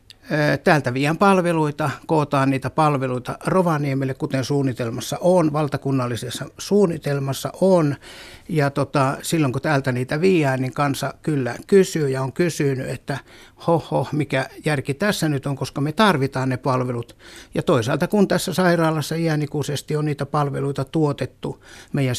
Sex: male